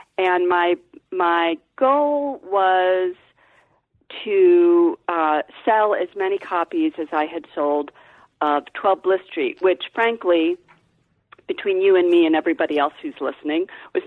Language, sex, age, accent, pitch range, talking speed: English, female, 40-59, American, 155-230 Hz, 130 wpm